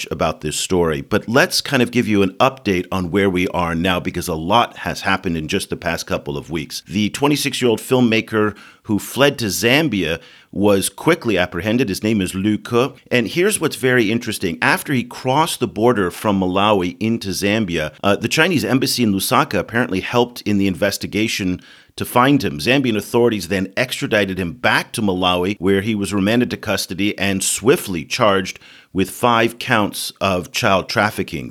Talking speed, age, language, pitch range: 185 wpm, 50-69, English, 95-120 Hz